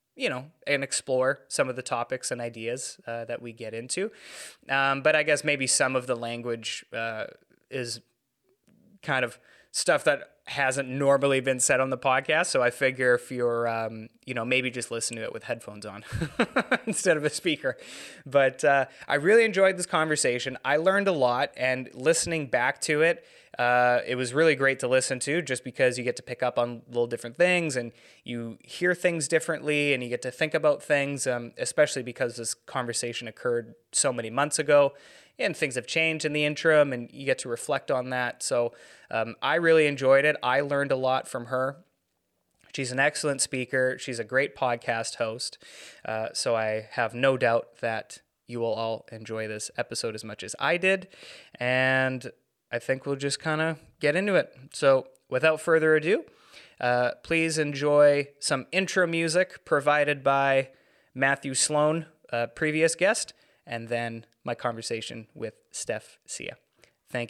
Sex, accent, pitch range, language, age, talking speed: male, American, 120-150 Hz, English, 20-39, 180 wpm